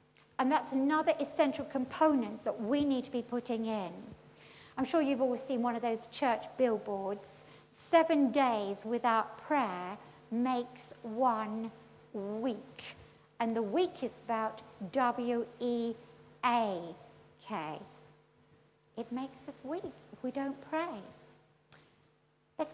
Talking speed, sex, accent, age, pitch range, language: 125 wpm, female, British, 60-79, 225-290 Hz, English